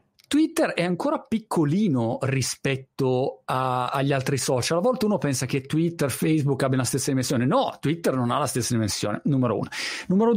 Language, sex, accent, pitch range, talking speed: Italian, male, native, 125-160 Hz, 180 wpm